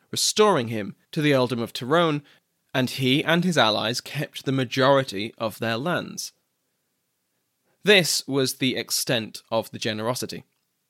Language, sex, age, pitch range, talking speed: English, male, 20-39, 115-145 Hz, 140 wpm